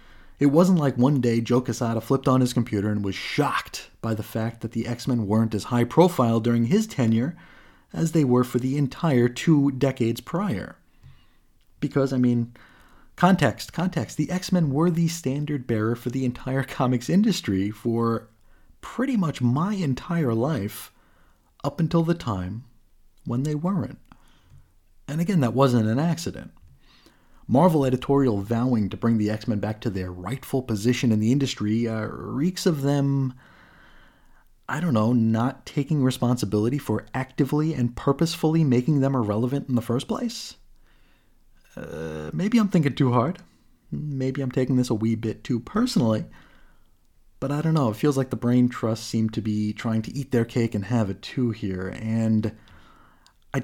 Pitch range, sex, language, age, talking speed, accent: 110-145 Hz, male, English, 30-49, 160 wpm, American